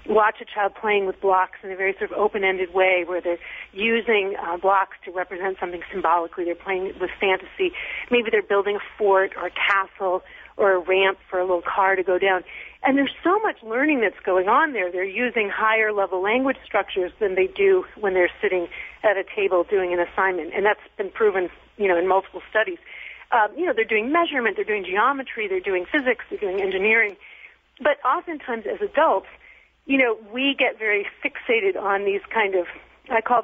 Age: 40-59